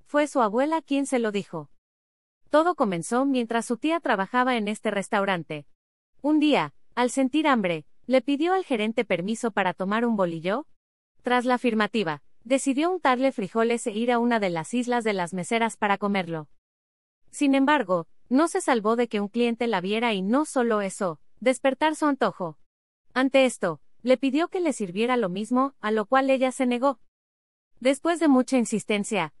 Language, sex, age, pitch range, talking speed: Spanish, female, 30-49, 195-265 Hz, 175 wpm